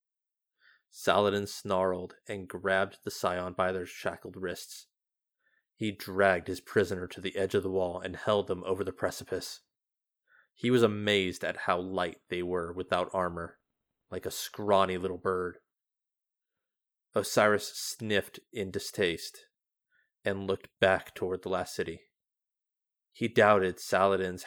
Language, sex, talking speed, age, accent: English, male, 135 wpm, 20-39, American